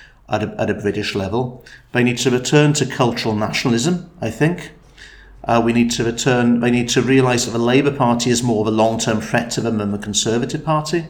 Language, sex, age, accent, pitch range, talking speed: English, male, 40-59, British, 115-145 Hz, 215 wpm